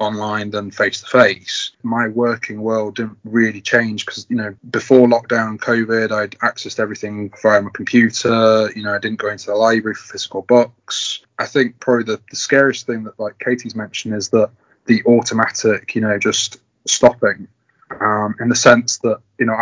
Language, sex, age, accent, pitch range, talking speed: English, male, 20-39, British, 110-120 Hz, 175 wpm